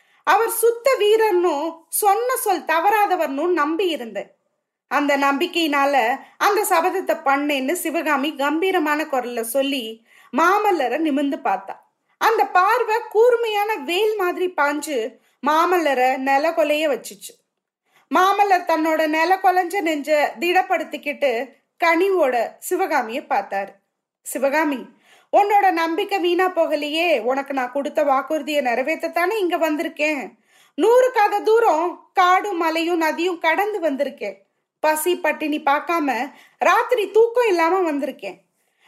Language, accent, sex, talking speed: Tamil, native, female, 100 wpm